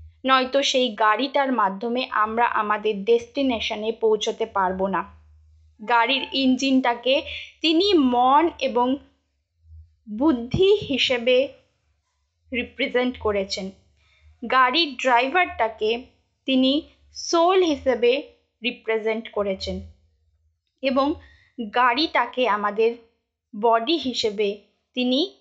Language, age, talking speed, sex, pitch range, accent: Bengali, 20-39, 75 wpm, female, 210-280 Hz, native